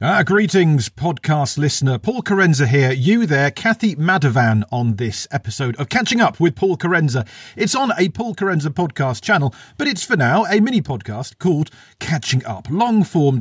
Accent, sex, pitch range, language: British, male, 120-180 Hz, English